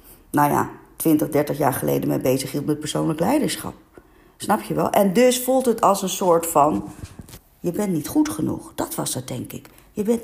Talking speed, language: 205 wpm, Dutch